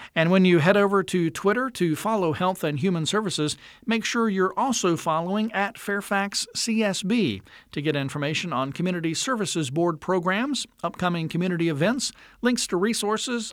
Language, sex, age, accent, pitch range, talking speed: English, male, 50-69, American, 160-210 Hz, 155 wpm